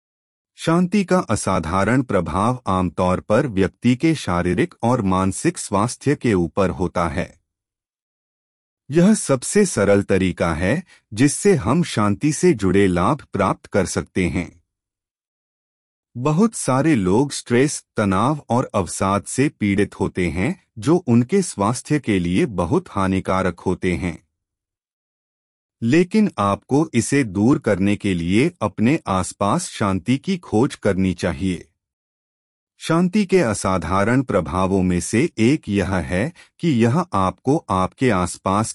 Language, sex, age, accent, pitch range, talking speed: Hindi, male, 30-49, native, 90-135 Hz, 120 wpm